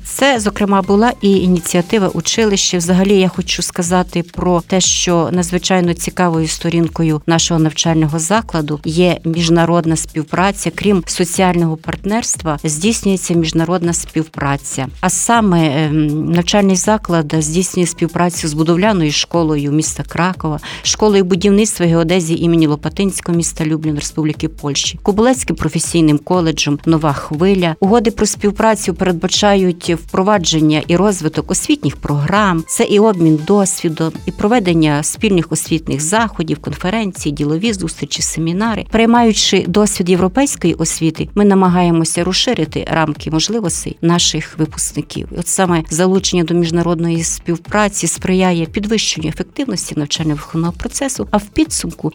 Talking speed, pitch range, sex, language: 115 wpm, 160-195 Hz, female, Ukrainian